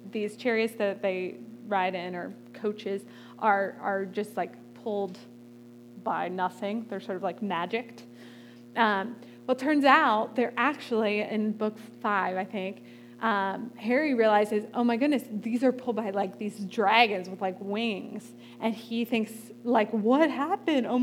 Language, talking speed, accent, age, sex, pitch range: English, 155 wpm, American, 20-39, female, 185-245 Hz